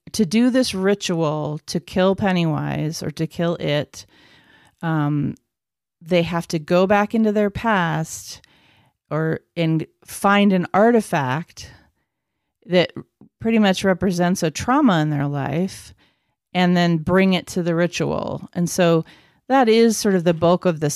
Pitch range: 160-185 Hz